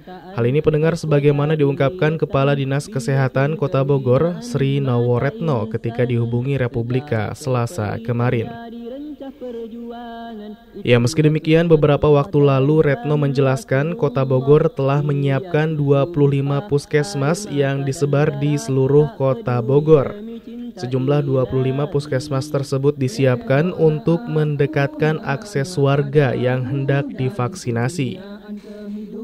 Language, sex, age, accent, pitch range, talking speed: Indonesian, male, 20-39, native, 135-155 Hz, 100 wpm